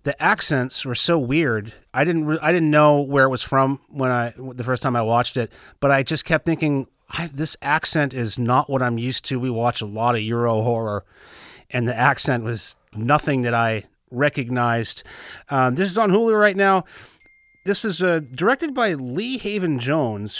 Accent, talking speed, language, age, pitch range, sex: American, 195 wpm, English, 30-49, 125-165 Hz, male